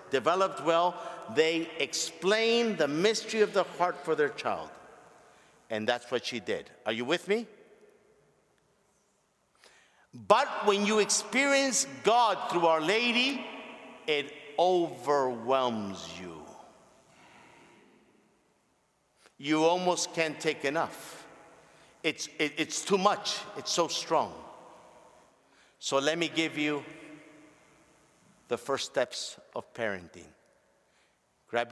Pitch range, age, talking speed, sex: 150-200 Hz, 50-69, 105 wpm, male